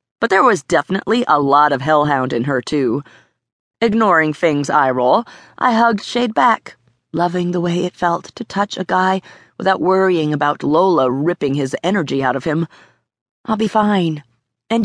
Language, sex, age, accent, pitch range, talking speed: English, female, 30-49, American, 160-220 Hz, 170 wpm